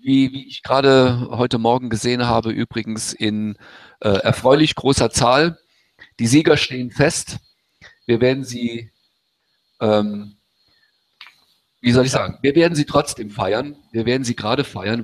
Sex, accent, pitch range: male, German, 100-120 Hz